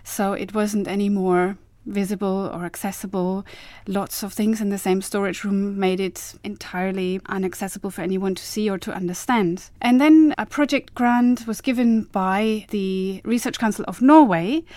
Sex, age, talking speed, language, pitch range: female, 30-49, 165 wpm, English, 190-225 Hz